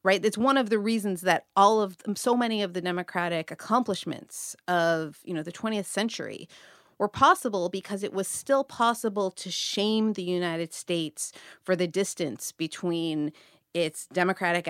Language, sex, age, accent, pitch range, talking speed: English, female, 30-49, American, 165-210 Hz, 165 wpm